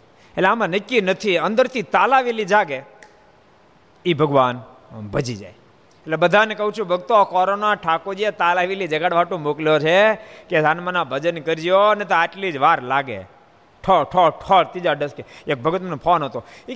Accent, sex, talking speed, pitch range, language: native, male, 150 wpm, 150-225 Hz, Gujarati